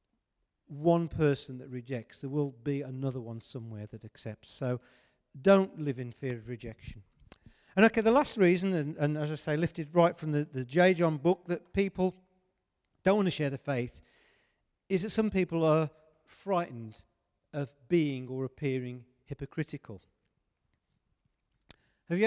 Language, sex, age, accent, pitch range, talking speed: English, male, 50-69, British, 125-185 Hz, 155 wpm